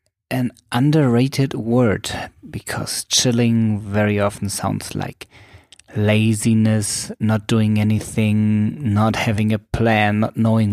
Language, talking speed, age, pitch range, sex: English, 105 wpm, 20-39, 100-110 Hz, male